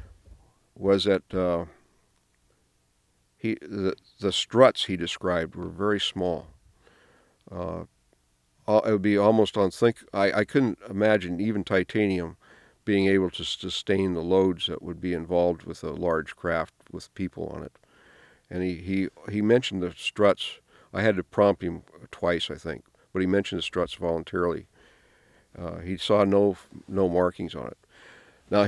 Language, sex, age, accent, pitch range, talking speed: English, male, 50-69, American, 85-100 Hz, 150 wpm